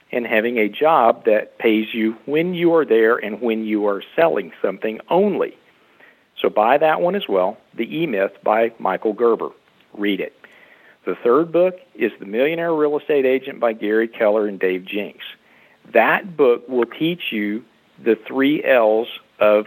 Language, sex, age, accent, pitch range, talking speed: English, male, 50-69, American, 110-170 Hz, 170 wpm